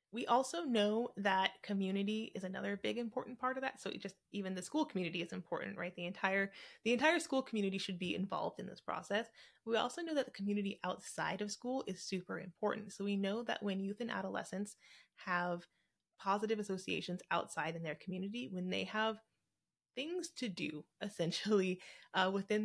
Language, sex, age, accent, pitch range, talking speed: English, female, 20-39, American, 180-225 Hz, 185 wpm